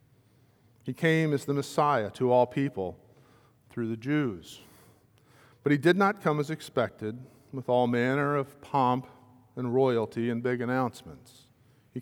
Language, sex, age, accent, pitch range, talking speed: English, male, 50-69, American, 120-140 Hz, 145 wpm